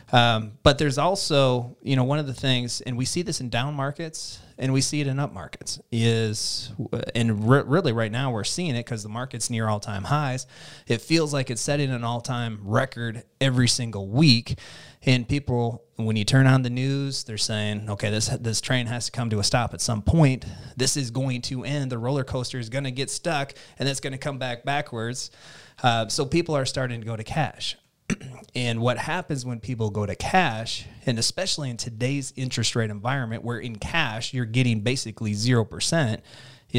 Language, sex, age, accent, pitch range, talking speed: English, male, 30-49, American, 115-135 Hz, 200 wpm